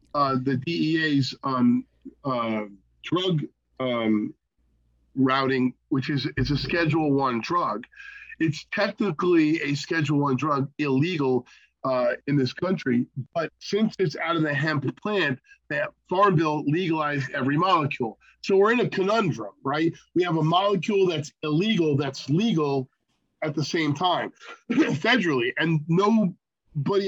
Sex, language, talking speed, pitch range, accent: male, English, 135 wpm, 140-180 Hz, American